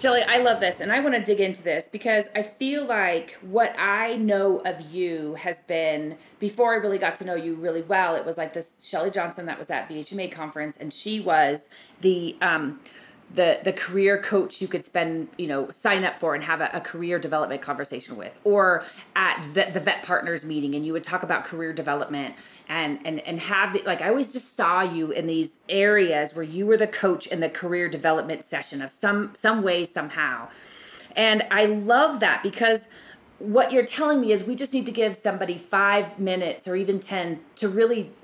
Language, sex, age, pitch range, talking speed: English, female, 30-49, 165-210 Hz, 205 wpm